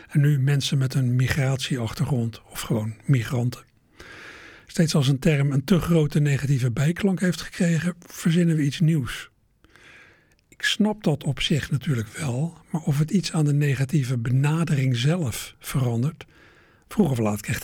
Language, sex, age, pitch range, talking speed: Dutch, male, 60-79, 125-165 Hz, 155 wpm